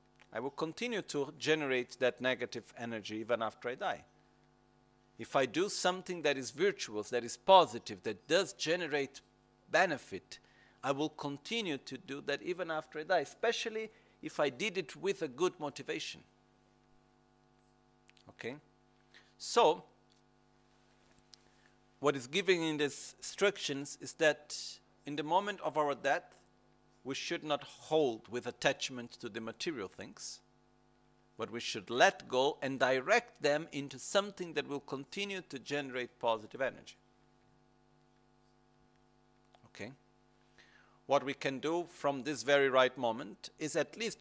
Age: 50-69